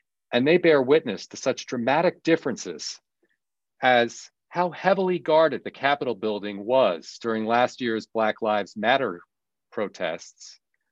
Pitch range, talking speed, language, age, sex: 115-150 Hz, 125 wpm, English, 40-59, male